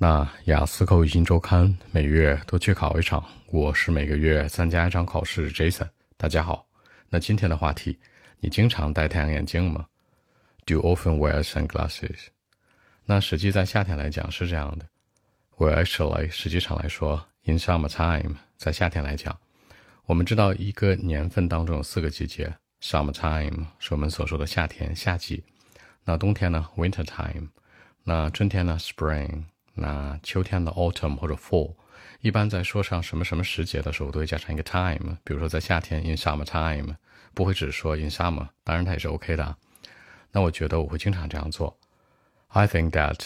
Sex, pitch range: male, 80-90 Hz